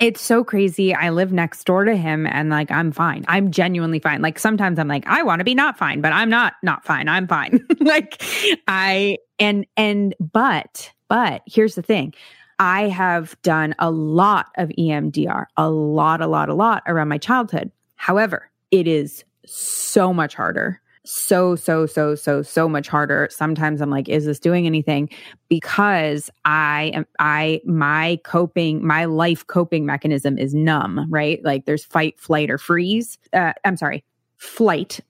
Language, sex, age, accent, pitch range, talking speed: English, female, 20-39, American, 155-185 Hz, 175 wpm